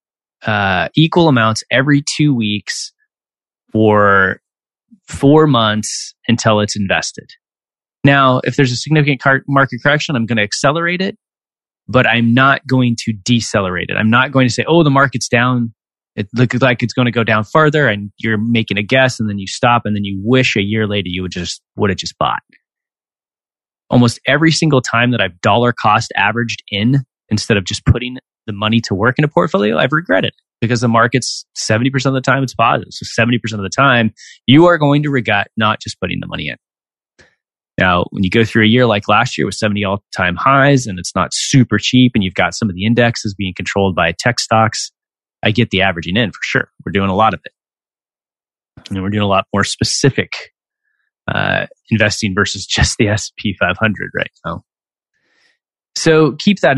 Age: 20-39